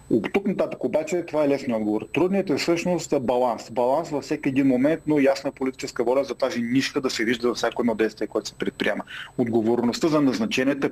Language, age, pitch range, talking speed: Bulgarian, 40-59, 125-155 Hz, 205 wpm